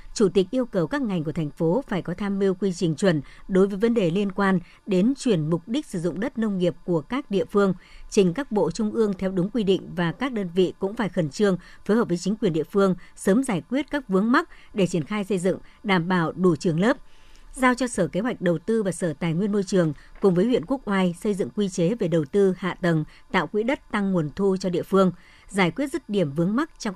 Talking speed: 265 wpm